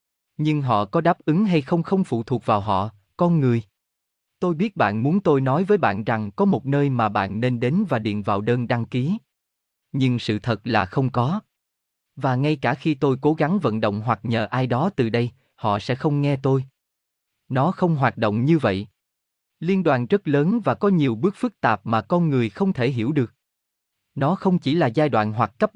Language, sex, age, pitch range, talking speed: Vietnamese, male, 20-39, 110-155 Hz, 215 wpm